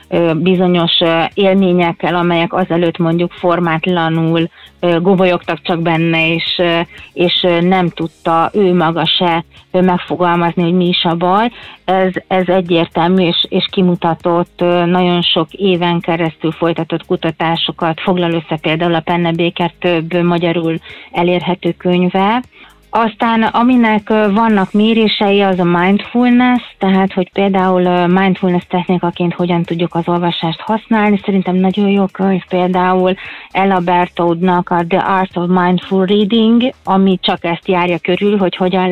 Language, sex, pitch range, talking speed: Hungarian, female, 170-195 Hz, 125 wpm